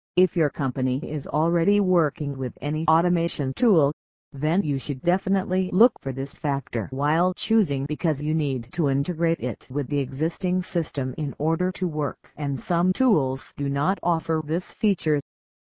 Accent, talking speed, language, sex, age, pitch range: American, 160 wpm, English, female, 50-69, 140-185 Hz